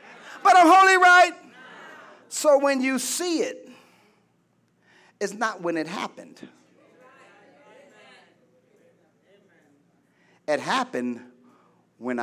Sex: male